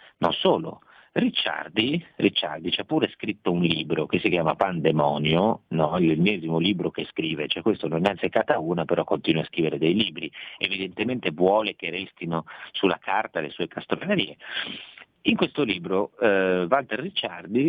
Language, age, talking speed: Italian, 50-69, 160 wpm